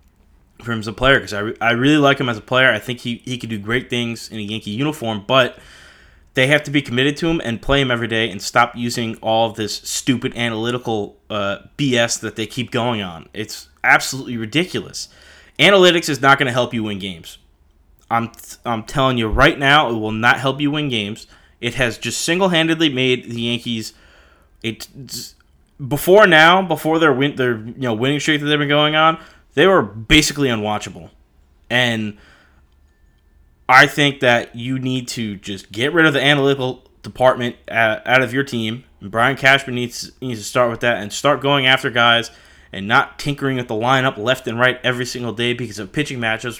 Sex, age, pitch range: male, 20-39, 105-135 Hz